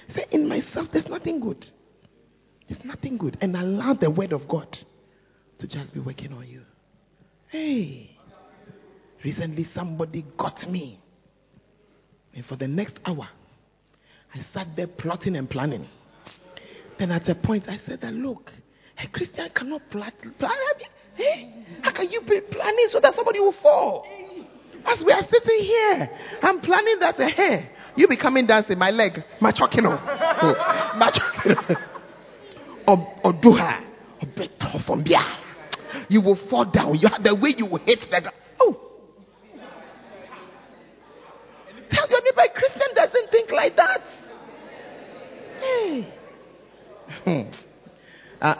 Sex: male